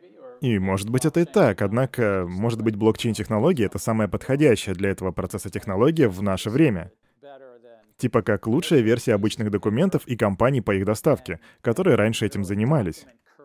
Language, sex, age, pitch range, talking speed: Russian, male, 20-39, 115-170 Hz, 155 wpm